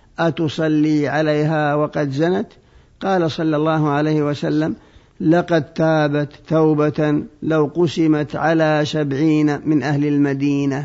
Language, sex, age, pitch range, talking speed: Arabic, male, 50-69, 150-170 Hz, 105 wpm